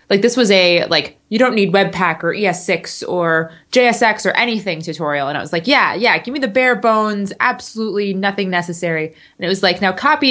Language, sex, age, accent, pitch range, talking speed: English, female, 20-39, American, 170-215 Hz, 210 wpm